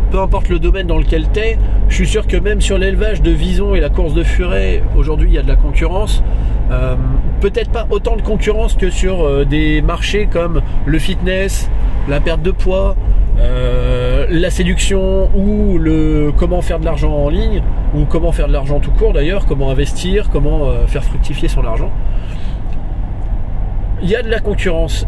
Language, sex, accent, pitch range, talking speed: French, male, French, 115-195 Hz, 190 wpm